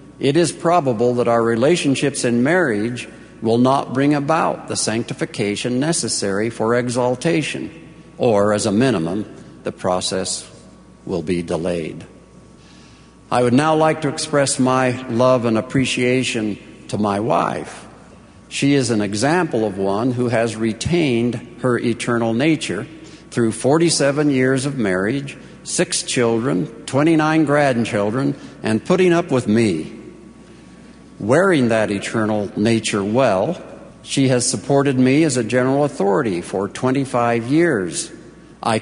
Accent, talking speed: American, 125 wpm